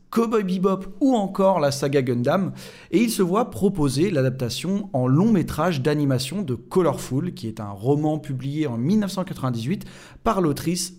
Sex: male